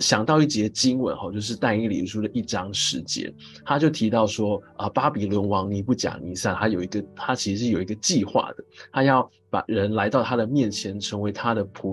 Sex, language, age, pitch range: male, Chinese, 20-39, 105-140 Hz